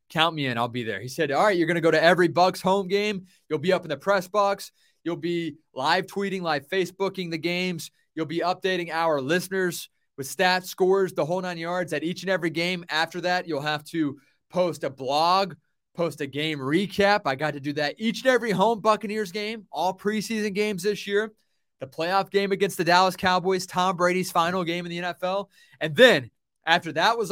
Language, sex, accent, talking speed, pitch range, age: English, male, American, 215 wpm, 155-195 Hz, 20-39